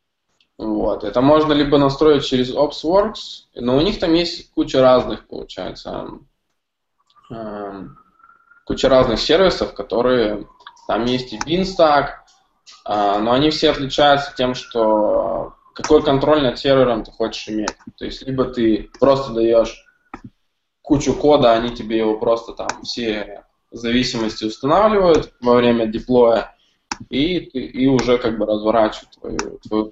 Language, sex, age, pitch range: Russian, male, 20-39, 110-140 Hz